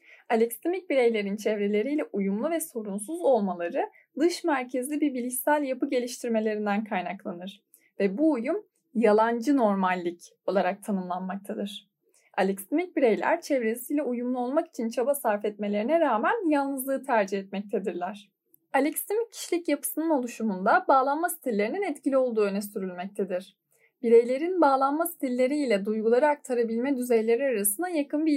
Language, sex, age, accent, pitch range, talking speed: Turkish, female, 10-29, native, 215-310 Hz, 110 wpm